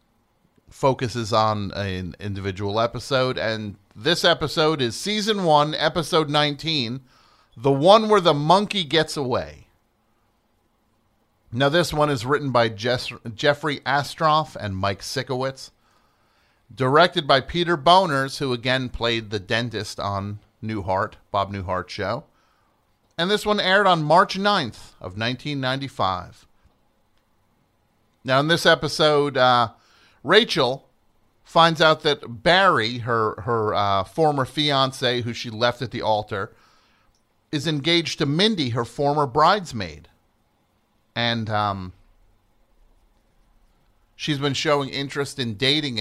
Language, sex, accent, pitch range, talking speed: English, male, American, 105-145 Hz, 120 wpm